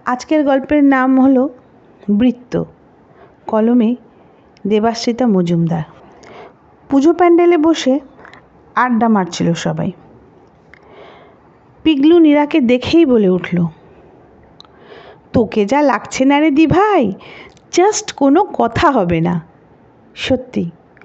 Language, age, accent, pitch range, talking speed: Bengali, 50-69, native, 210-295 Hz, 90 wpm